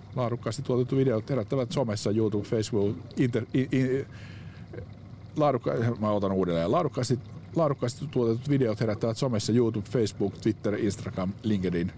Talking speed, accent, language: 105 wpm, native, Finnish